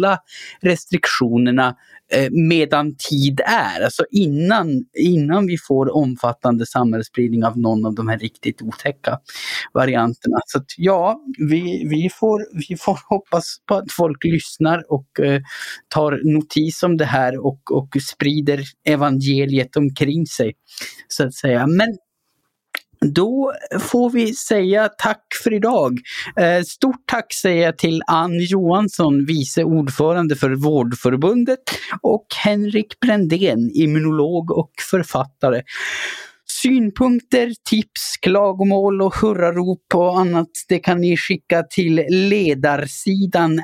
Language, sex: Swedish, male